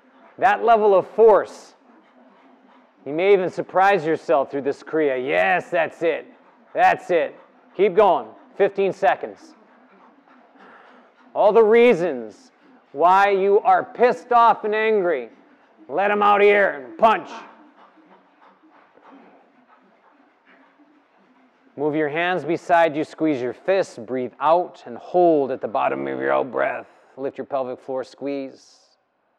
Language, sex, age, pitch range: English, male, 30-49, 130-200 Hz